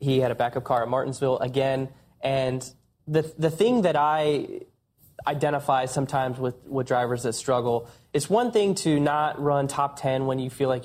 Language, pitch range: English, 125-150 Hz